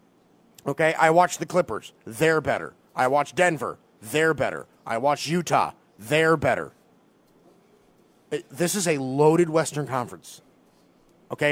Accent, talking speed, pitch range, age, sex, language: American, 125 wpm, 130-215 Hz, 30-49, male, English